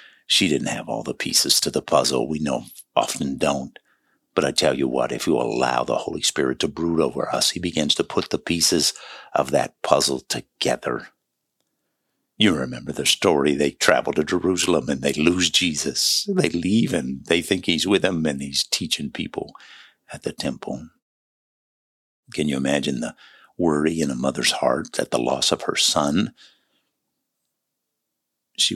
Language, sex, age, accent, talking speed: English, male, 60-79, American, 170 wpm